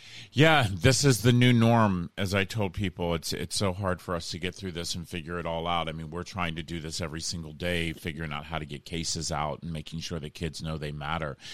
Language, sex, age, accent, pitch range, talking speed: English, male, 40-59, American, 85-105 Hz, 260 wpm